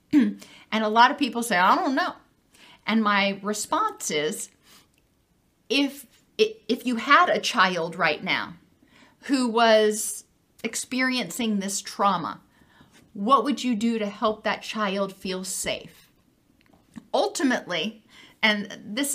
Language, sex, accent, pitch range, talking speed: English, female, American, 200-255 Hz, 120 wpm